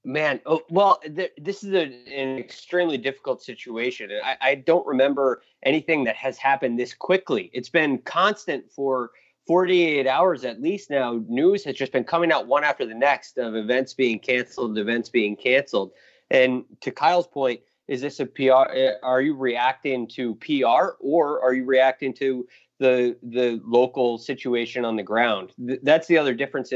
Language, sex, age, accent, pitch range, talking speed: English, male, 30-49, American, 120-140 Hz, 165 wpm